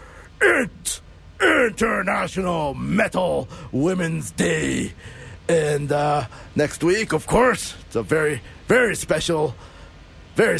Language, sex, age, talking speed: English, male, 40-59, 95 wpm